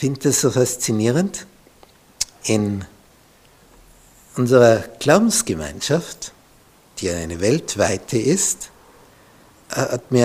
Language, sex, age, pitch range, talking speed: German, male, 60-79, 110-140 Hz, 80 wpm